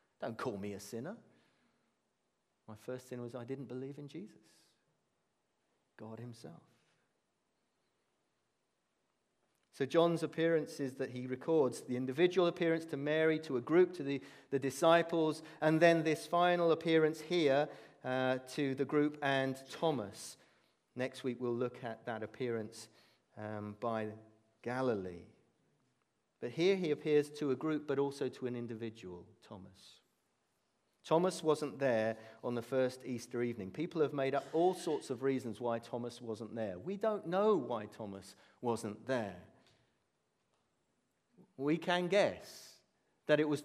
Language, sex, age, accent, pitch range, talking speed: English, male, 40-59, British, 120-160 Hz, 140 wpm